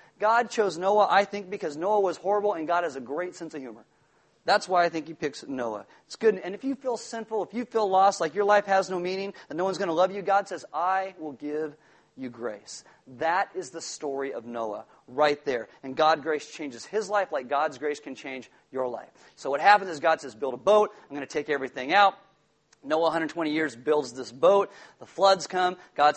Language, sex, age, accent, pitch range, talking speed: English, male, 40-59, American, 150-195 Hz, 230 wpm